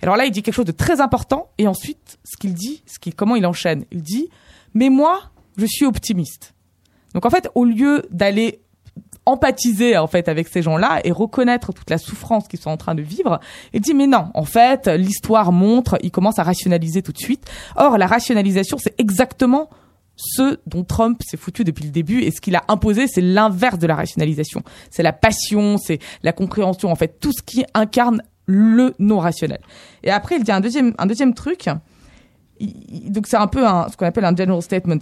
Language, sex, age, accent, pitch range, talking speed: French, female, 20-39, French, 175-240 Hz, 210 wpm